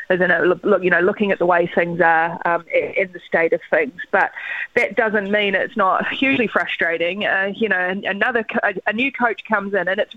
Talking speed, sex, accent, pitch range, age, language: 220 wpm, female, Australian, 205-255 Hz, 20-39, English